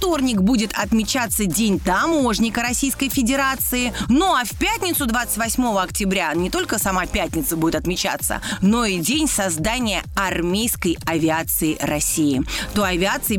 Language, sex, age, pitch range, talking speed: Russian, female, 30-49, 175-240 Hz, 125 wpm